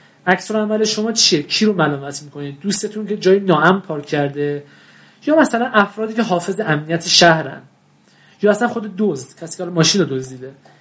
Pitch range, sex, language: 155-205 Hz, male, Persian